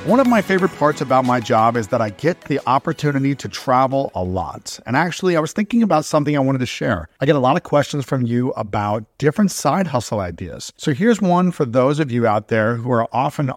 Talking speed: 240 wpm